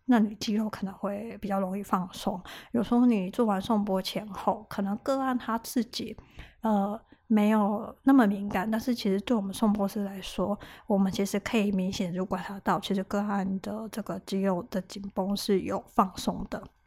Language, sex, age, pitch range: Chinese, female, 20-39, 195-225 Hz